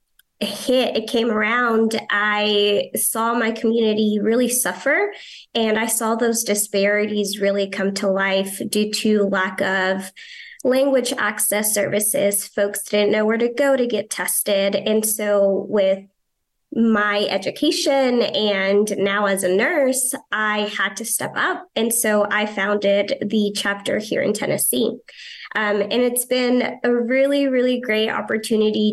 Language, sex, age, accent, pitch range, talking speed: English, female, 20-39, American, 210-245 Hz, 140 wpm